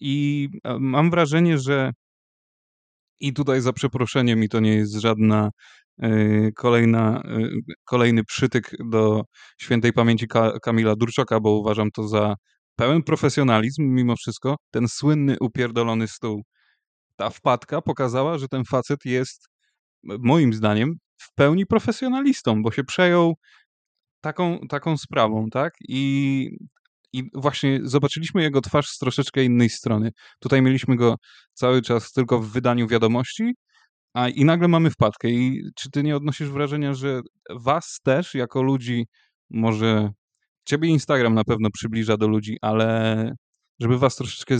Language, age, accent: Polish, 20-39, native